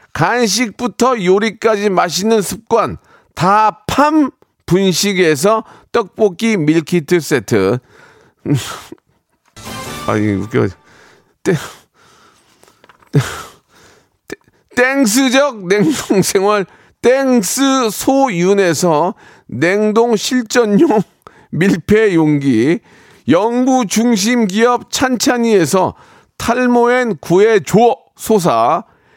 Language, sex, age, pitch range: Korean, male, 40-59, 185-245 Hz